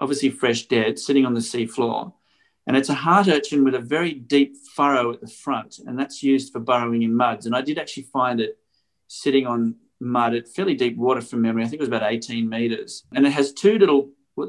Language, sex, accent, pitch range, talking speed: English, male, Australian, 115-140 Hz, 230 wpm